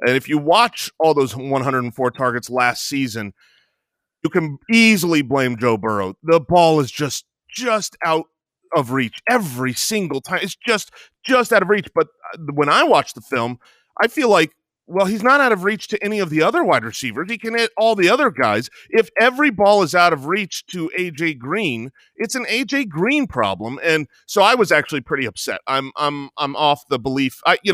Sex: male